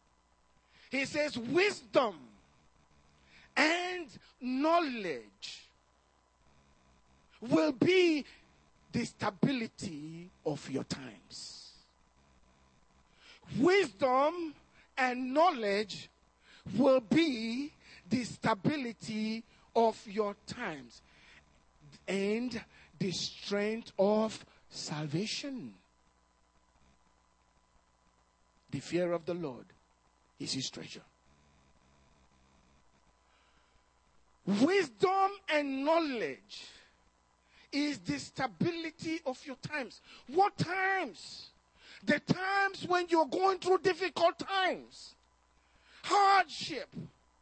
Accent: Nigerian